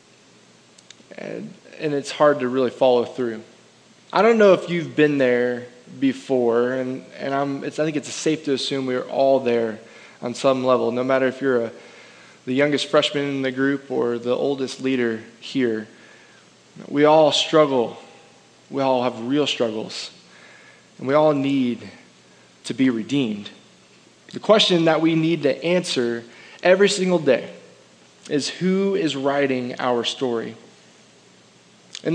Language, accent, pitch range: English, American, 130-165 Hz